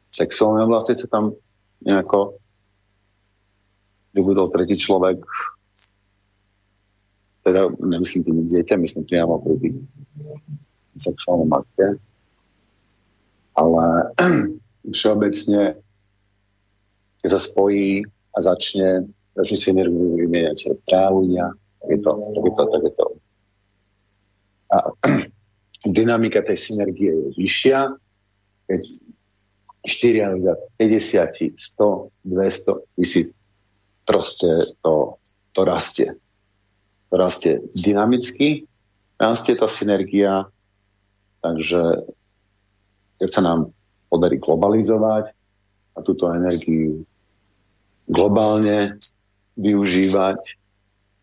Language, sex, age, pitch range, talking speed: Slovak, male, 50-69, 95-105 Hz, 80 wpm